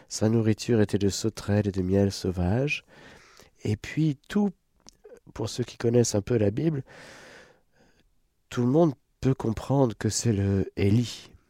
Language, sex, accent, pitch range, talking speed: French, male, French, 90-130 Hz, 150 wpm